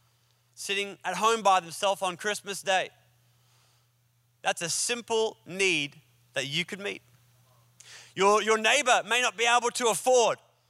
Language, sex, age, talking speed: English, male, 30-49, 140 wpm